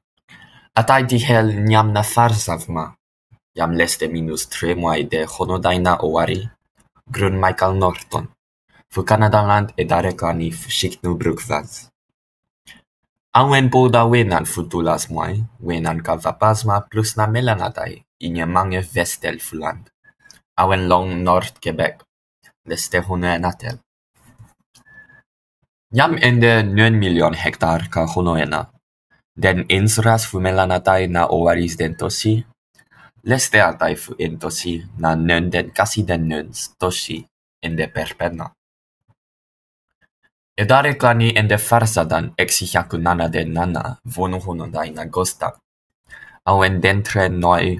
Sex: male